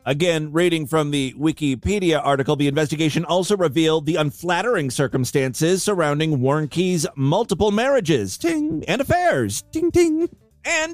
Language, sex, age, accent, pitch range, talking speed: English, male, 40-59, American, 145-205 Hz, 125 wpm